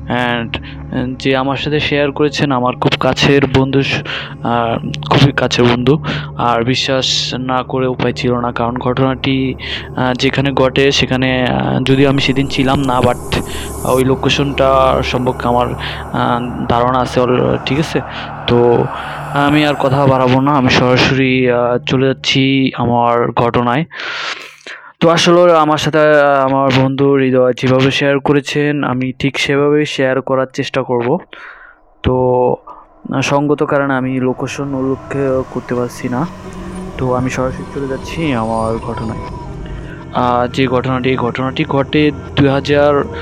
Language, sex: Bengali, male